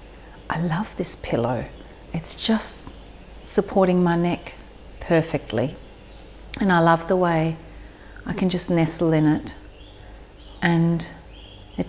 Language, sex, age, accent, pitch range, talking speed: English, female, 40-59, Australian, 130-175 Hz, 115 wpm